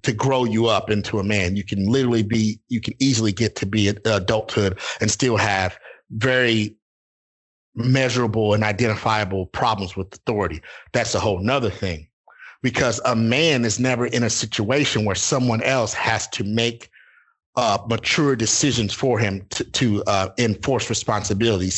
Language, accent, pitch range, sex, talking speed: English, American, 110-130 Hz, male, 160 wpm